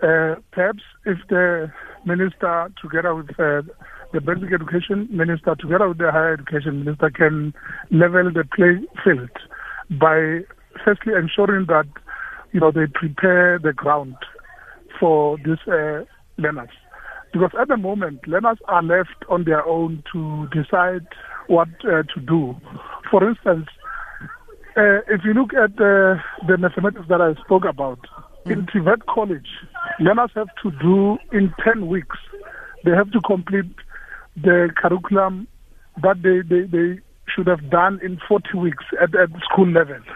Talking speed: 145 wpm